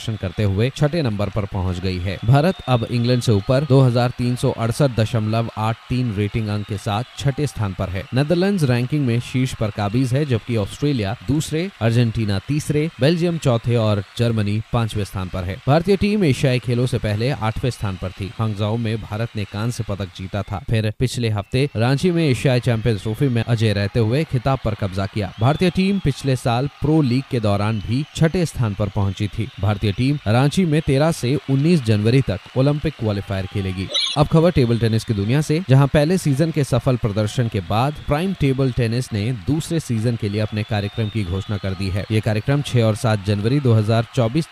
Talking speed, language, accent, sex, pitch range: 185 wpm, Hindi, native, male, 105-140 Hz